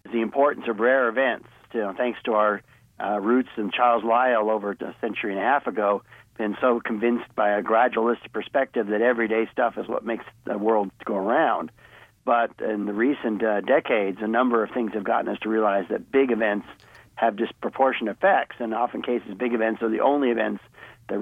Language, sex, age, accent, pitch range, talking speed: English, male, 60-79, American, 110-125 Hz, 200 wpm